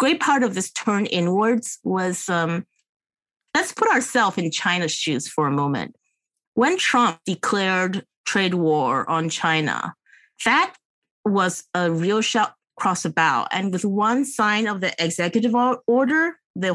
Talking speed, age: 145 wpm, 30-49